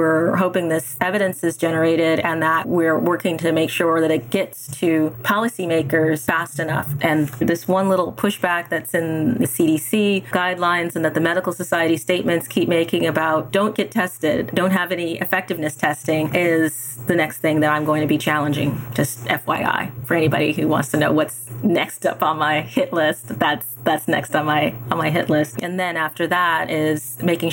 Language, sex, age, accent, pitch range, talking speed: English, female, 30-49, American, 155-180 Hz, 190 wpm